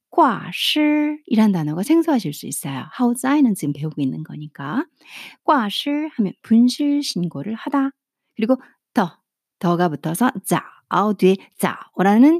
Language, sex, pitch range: Korean, female, 180-280 Hz